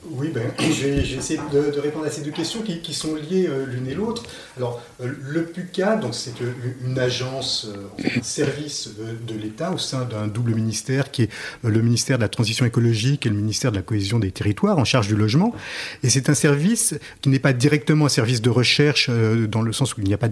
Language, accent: French, French